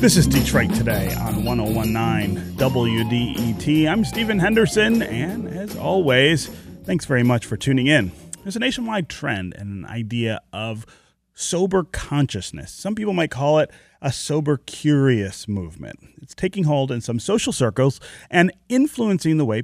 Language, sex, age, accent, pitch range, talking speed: English, male, 30-49, American, 110-160 Hz, 150 wpm